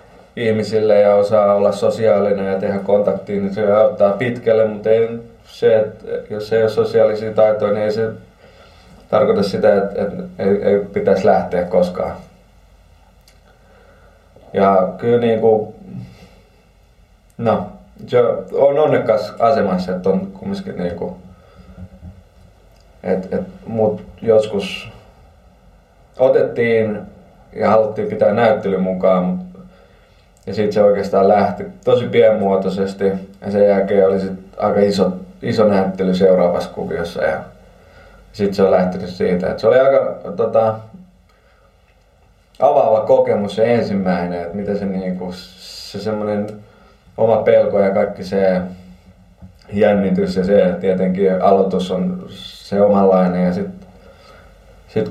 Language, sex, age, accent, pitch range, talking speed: Finnish, male, 20-39, native, 95-110 Hz, 115 wpm